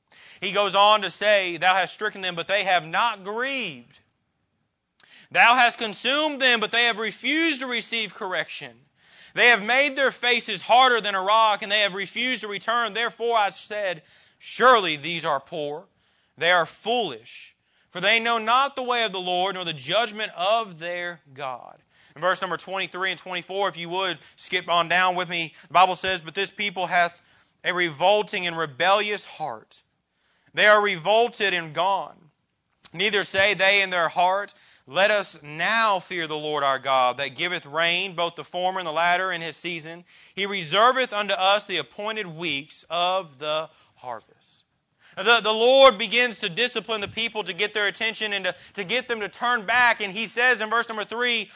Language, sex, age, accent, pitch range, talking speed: English, male, 30-49, American, 175-230 Hz, 185 wpm